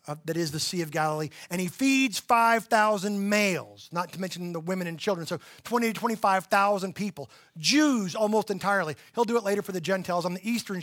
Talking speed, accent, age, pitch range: 205 wpm, American, 30-49, 165-230 Hz